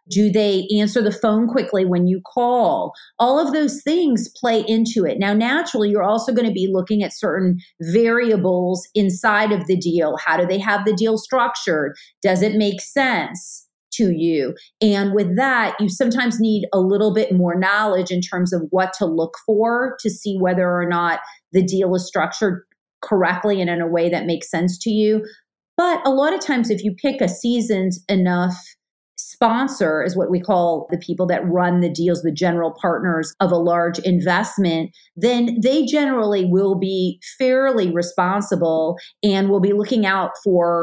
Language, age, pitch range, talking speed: English, 40-59, 180-225 Hz, 180 wpm